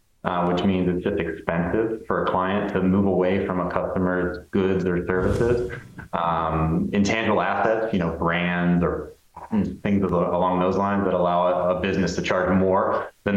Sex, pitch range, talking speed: male, 85-100 Hz, 170 wpm